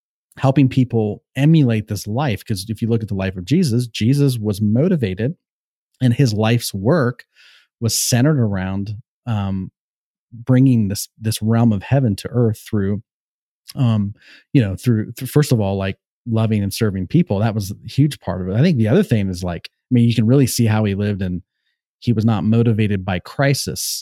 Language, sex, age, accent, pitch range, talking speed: English, male, 30-49, American, 105-130 Hz, 190 wpm